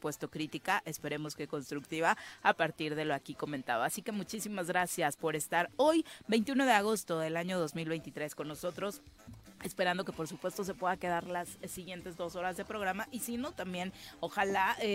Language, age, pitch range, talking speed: Spanish, 30-49, 160-195 Hz, 175 wpm